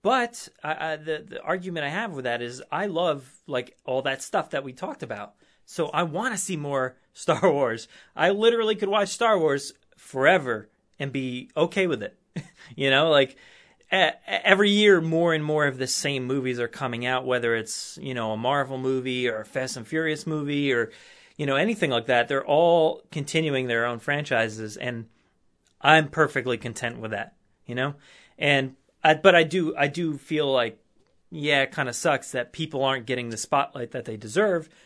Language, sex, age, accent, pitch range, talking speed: English, male, 30-49, American, 125-155 Hz, 195 wpm